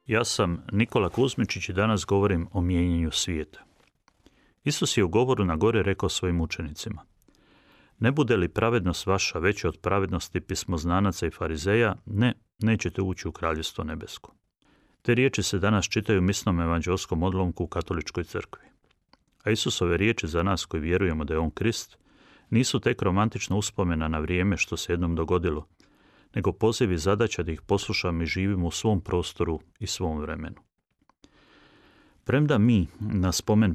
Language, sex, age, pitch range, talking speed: Croatian, male, 30-49, 85-105 Hz, 155 wpm